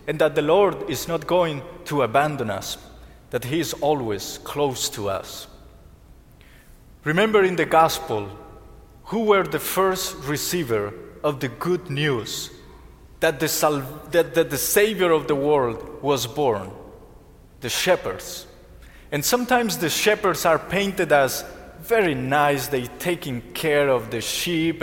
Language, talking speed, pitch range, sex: English, 145 wpm, 140-195 Hz, male